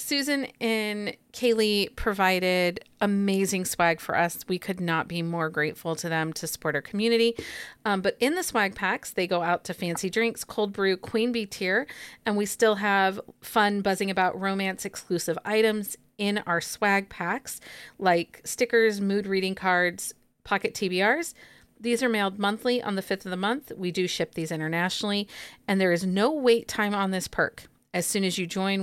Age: 40-59